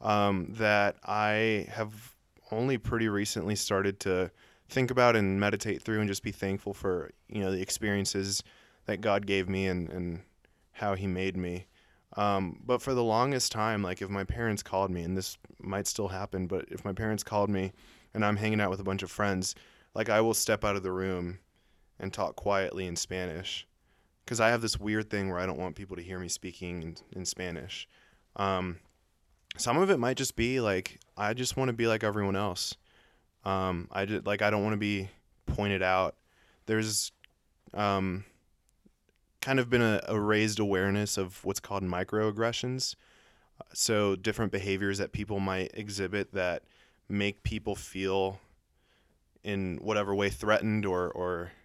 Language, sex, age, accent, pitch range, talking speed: English, male, 20-39, American, 95-105 Hz, 175 wpm